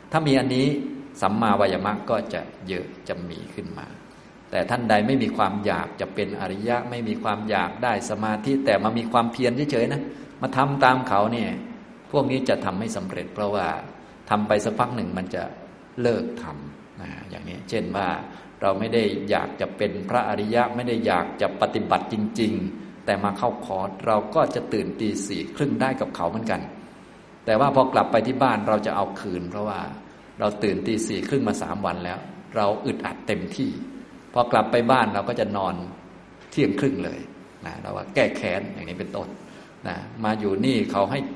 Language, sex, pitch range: Thai, male, 100-120 Hz